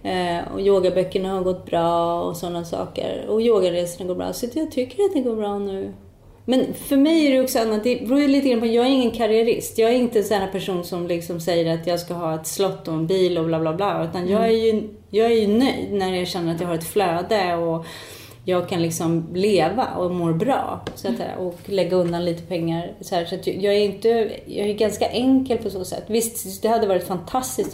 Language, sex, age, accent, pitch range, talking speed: Swedish, female, 30-49, native, 170-220 Hz, 230 wpm